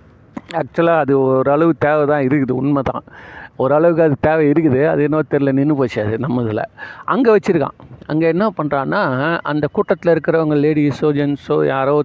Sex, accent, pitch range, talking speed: male, native, 145-190 Hz, 155 wpm